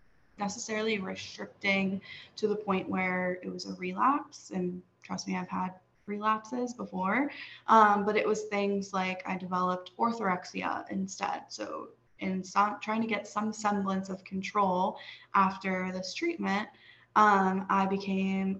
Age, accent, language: 10-29, American, English